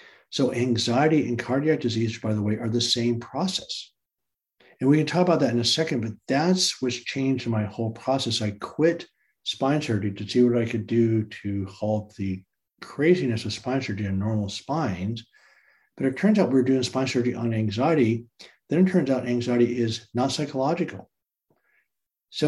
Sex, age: male, 60-79